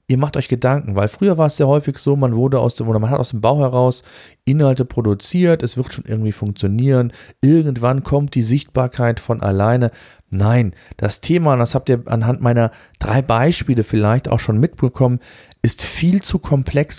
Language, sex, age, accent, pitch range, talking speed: German, male, 40-59, German, 115-145 Hz, 185 wpm